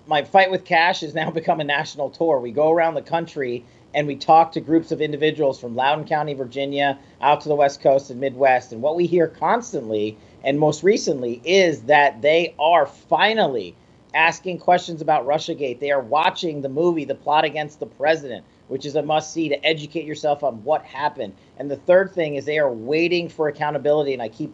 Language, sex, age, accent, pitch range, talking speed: English, male, 40-59, American, 125-160 Hz, 205 wpm